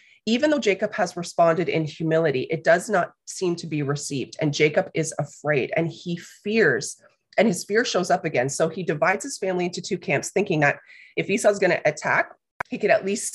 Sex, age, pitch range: female, 30-49, 160-200 Hz